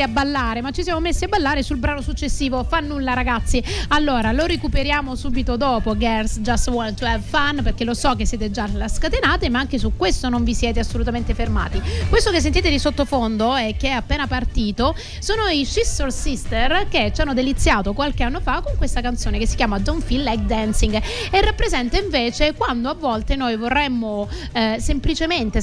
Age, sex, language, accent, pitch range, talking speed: 30-49, female, Italian, native, 220-280 Hz, 190 wpm